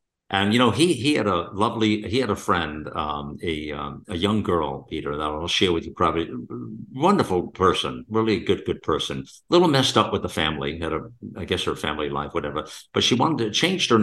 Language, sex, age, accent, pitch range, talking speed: English, male, 60-79, American, 85-120 Hz, 225 wpm